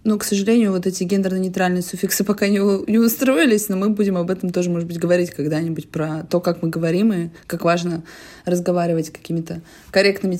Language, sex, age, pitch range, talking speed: Russian, female, 20-39, 170-205 Hz, 185 wpm